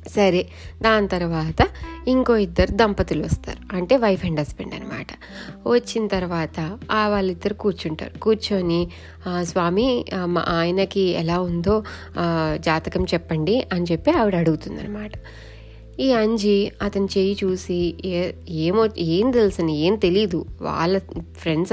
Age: 20-39